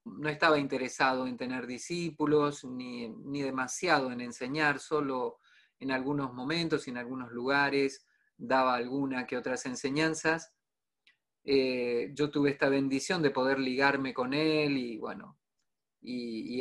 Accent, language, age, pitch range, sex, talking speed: Argentinian, Spanish, 20-39, 130-150 Hz, male, 135 wpm